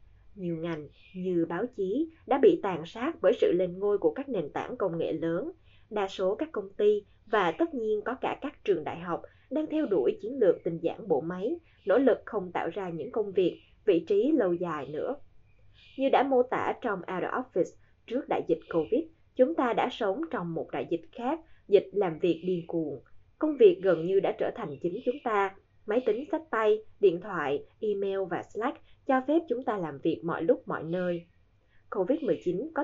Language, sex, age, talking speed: Vietnamese, female, 20-39, 205 wpm